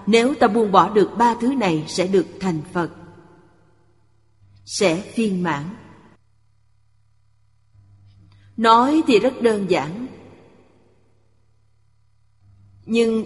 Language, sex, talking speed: Vietnamese, female, 95 wpm